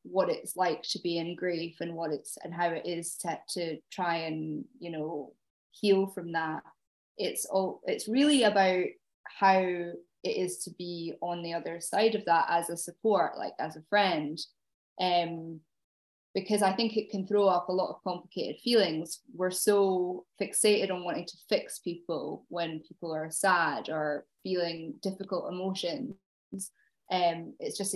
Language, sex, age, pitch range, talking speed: English, female, 10-29, 170-200 Hz, 165 wpm